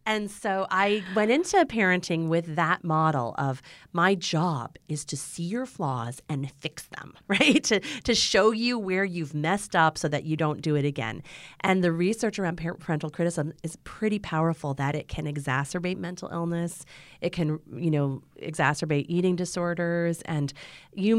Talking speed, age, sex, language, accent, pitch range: 170 wpm, 30-49, female, English, American, 145-190 Hz